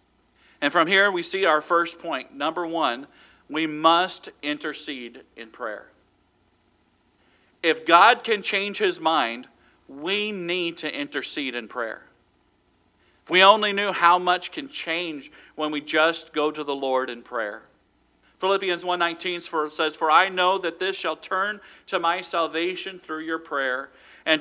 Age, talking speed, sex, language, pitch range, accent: 40-59, 150 wpm, male, English, 155-195 Hz, American